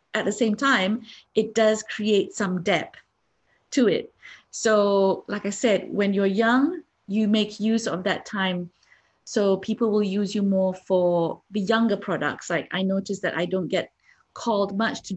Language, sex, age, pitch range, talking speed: English, female, 30-49, 185-225 Hz, 175 wpm